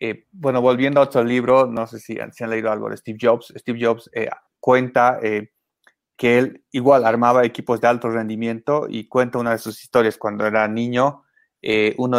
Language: Spanish